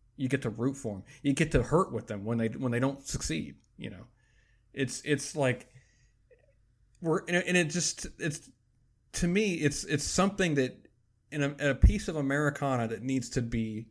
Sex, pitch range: male, 115-140 Hz